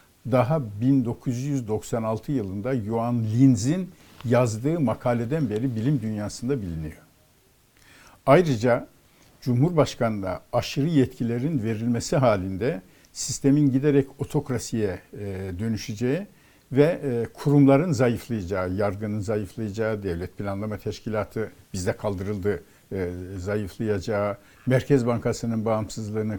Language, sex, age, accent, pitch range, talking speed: Turkish, male, 60-79, native, 105-135 Hz, 80 wpm